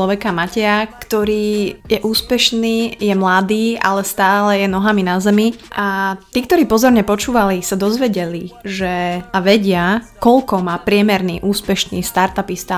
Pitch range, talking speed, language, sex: 190-225 Hz, 125 wpm, Slovak, female